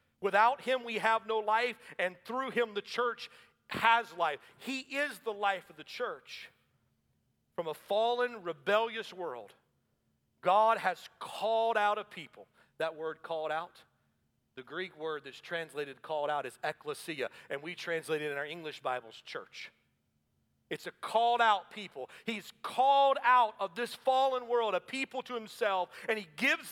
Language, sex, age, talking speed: English, male, 40-59, 165 wpm